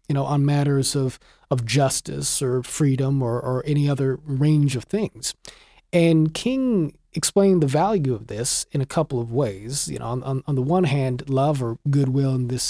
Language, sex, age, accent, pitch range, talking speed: English, male, 30-49, American, 130-160 Hz, 195 wpm